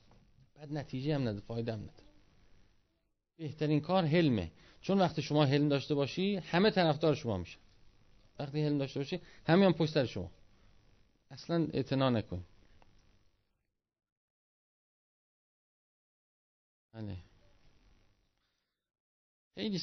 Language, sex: Persian, male